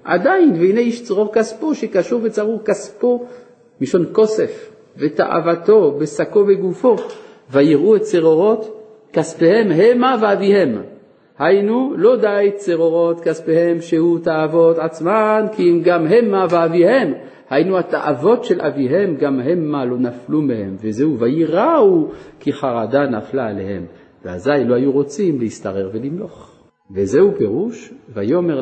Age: 50-69